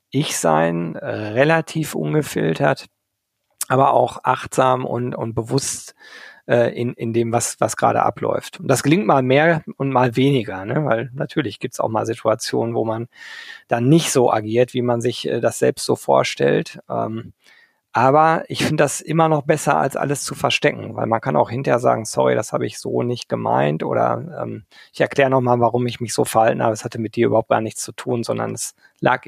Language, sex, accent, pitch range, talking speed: German, male, German, 120-145 Hz, 195 wpm